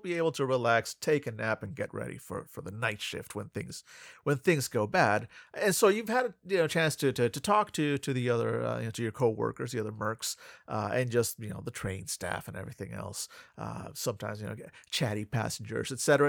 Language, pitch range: English, 115-150 Hz